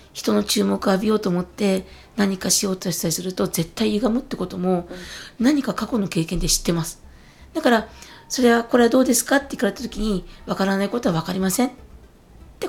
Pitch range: 185-245 Hz